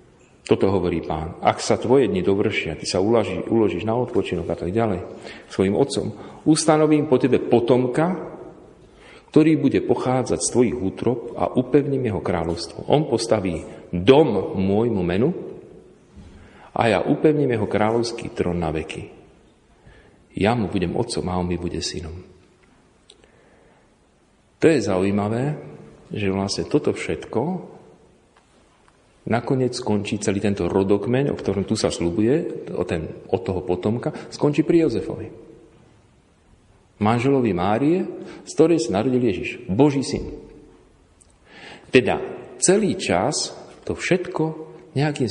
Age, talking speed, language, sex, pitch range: 40-59, 125 wpm, Slovak, male, 95-145 Hz